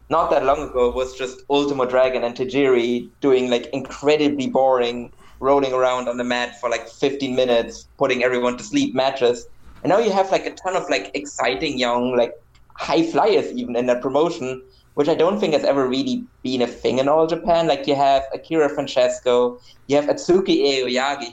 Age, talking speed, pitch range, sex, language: 20-39, 190 wpm, 120-140 Hz, male, English